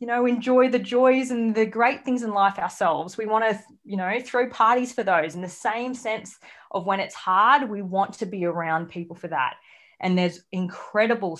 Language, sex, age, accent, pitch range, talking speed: English, female, 20-39, Australian, 175-225 Hz, 210 wpm